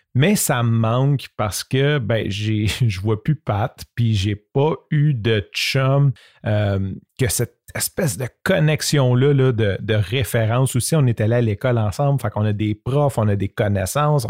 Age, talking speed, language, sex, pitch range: 40-59, 190 wpm, French, male, 110-140 Hz